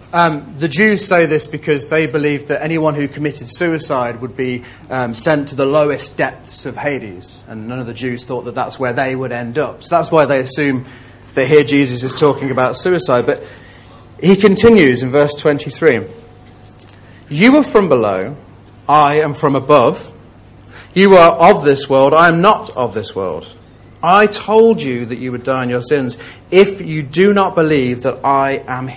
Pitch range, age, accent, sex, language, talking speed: 120-165 Hz, 40-59, British, male, English, 190 wpm